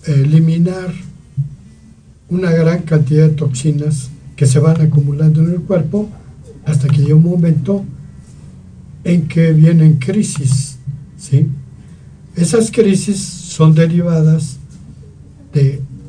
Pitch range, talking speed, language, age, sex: 140-165 Hz, 100 wpm, Spanish, 60-79, male